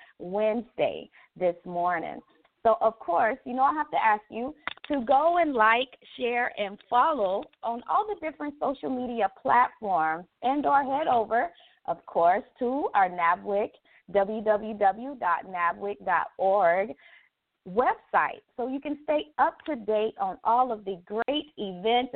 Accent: American